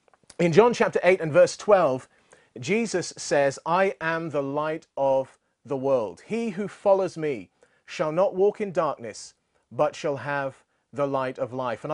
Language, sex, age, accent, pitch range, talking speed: English, male, 40-59, British, 150-200 Hz, 165 wpm